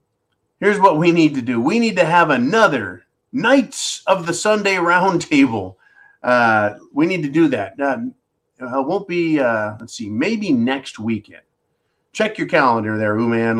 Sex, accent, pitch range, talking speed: male, American, 135-200 Hz, 170 wpm